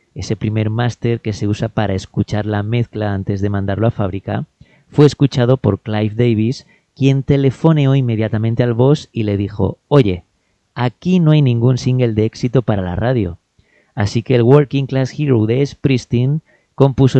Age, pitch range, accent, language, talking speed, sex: 30-49, 110-135 Hz, Spanish, Spanish, 170 wpm, male